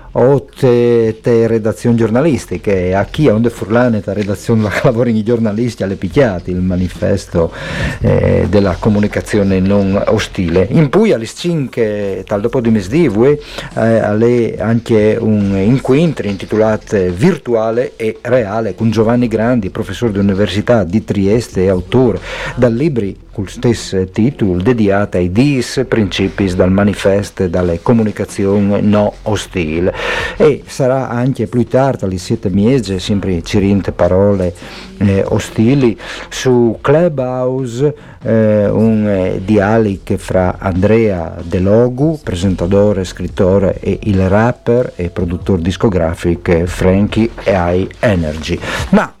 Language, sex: Italian, male